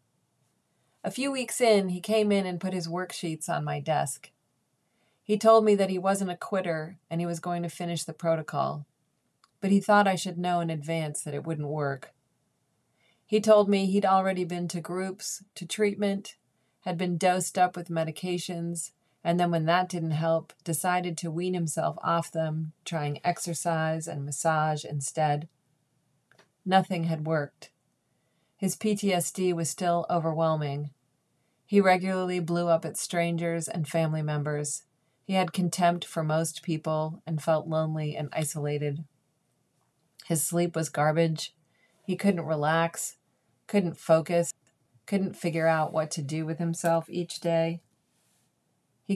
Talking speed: 150 wpm